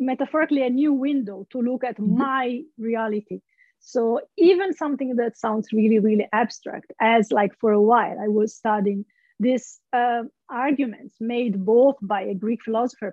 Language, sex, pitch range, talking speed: English, female, 215-270 Hz, 155 wpm